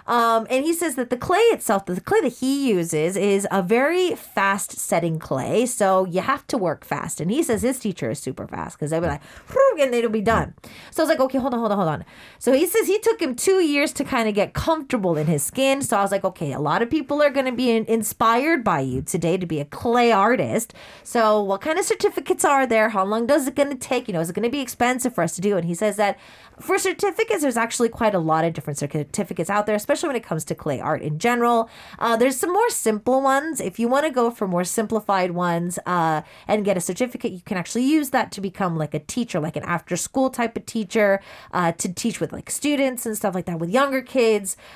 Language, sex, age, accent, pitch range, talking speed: English, female, 30-49, American, 185-270 Hz, 255 wpm